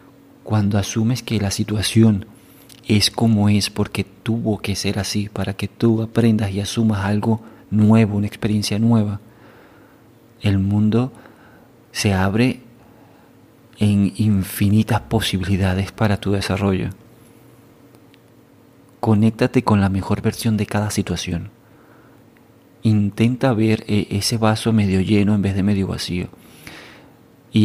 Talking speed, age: 115 wpm, 40-59